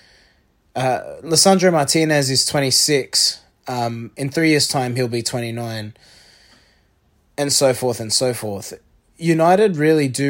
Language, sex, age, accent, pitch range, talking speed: English, male, 20-39, Australian, 110-140 Hz, 130 wpm